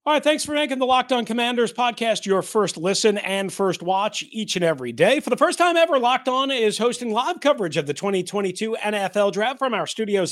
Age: 40-59